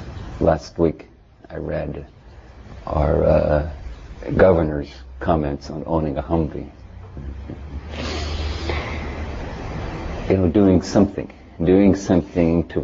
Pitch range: 80-100 Hz